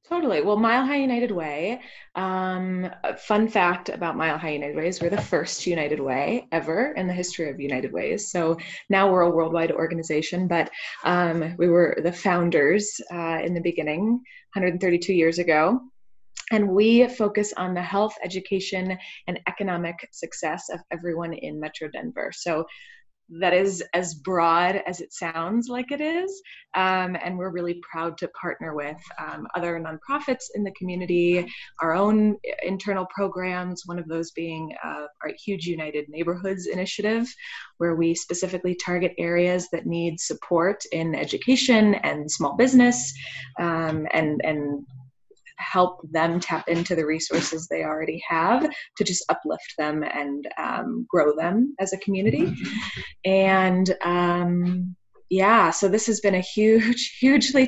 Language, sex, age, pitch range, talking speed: English, female, 20-39, 165-210 Hz, 150 wpm